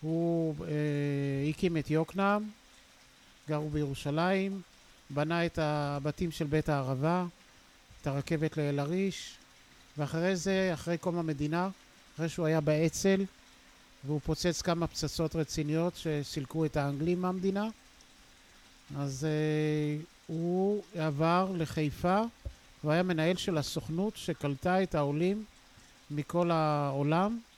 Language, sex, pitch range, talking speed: English, male, 145-175 Hz, 100 wpm